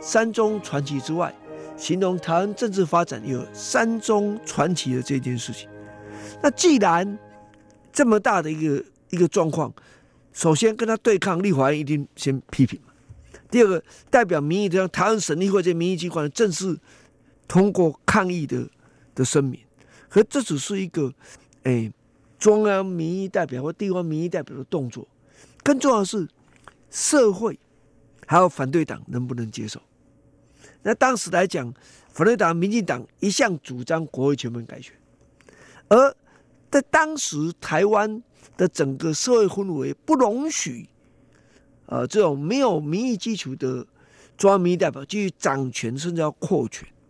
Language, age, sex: Chinese, 50-69, male